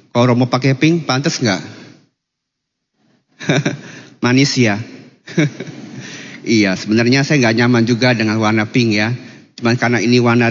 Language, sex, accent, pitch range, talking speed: Indonesian, male, native, 110-125 Hz, 130 wpm